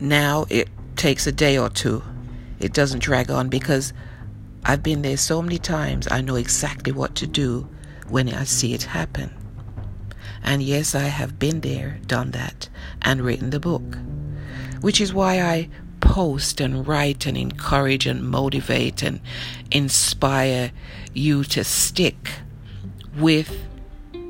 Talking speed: 145 wpm